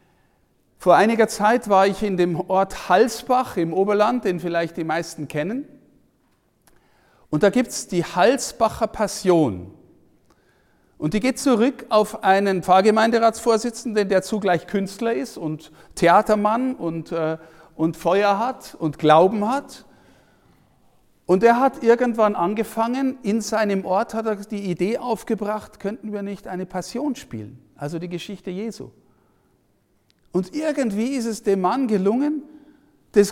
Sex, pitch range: male, 180-240 Hz